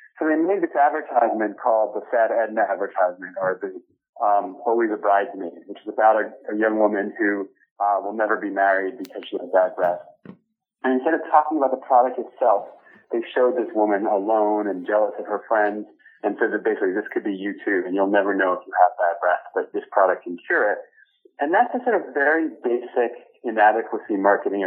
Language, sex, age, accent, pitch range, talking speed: English, male, 30-49, American, 105-165 Hz, 205 wpm